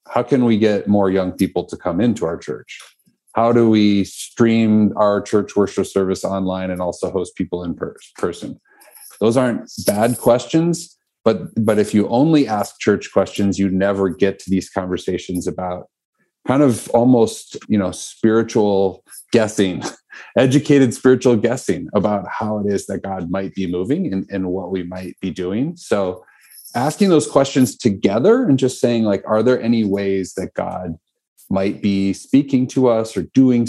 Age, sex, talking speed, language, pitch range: 40-59, male, 170 wpm, English, 95-120 Hz